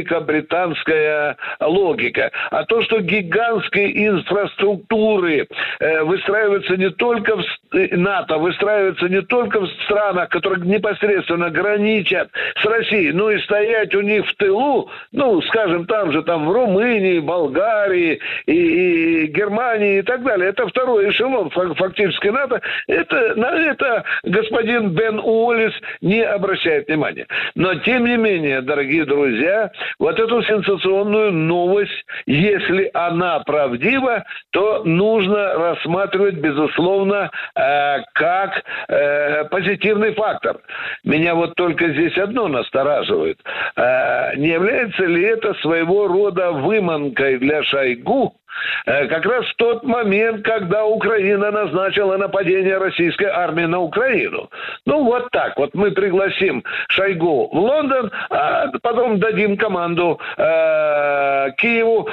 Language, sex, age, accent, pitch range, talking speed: Russian, male, 60-79, native, 175-225 Hz, 115 wpm